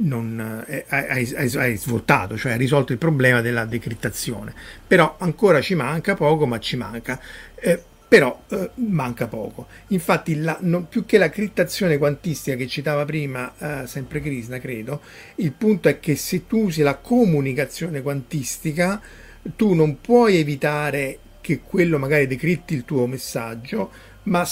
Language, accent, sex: Italian, native, male